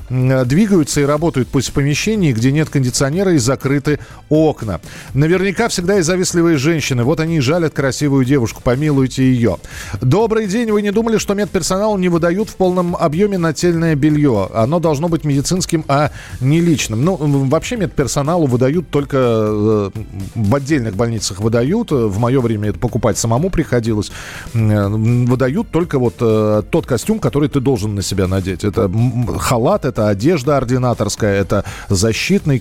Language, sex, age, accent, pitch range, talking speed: Russian, male, 40-59, native, 110-160 Hz, 145 wpm